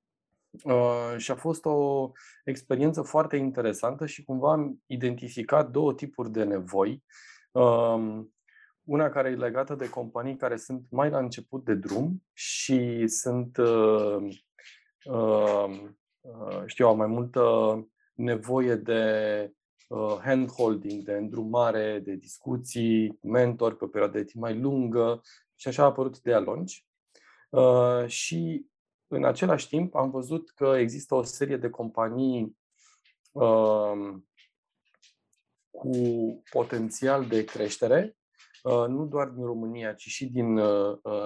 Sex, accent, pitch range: male, native, 110-135 Hz